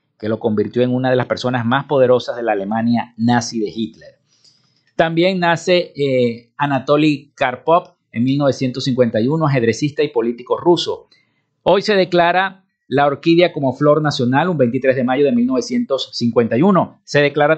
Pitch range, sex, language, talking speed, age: 130-170 Hz, male, Spanish, 145 wpm, 50-69